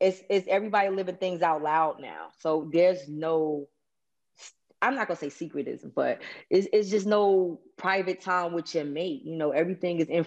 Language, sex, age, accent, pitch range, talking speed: English, female, 20-39, American, 160-195 Hz, 185 wpm